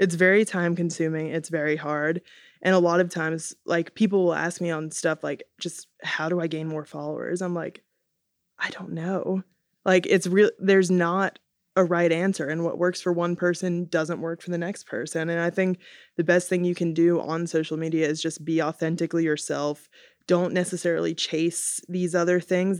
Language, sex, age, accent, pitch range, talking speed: English, female, 20-39, American, 155-180 Hz, 195 wpm